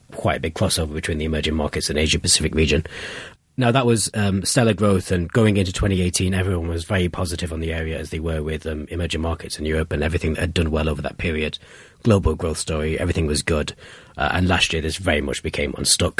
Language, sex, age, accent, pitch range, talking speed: English, male, 30-49, British, 80-105 Hz, 230 wpm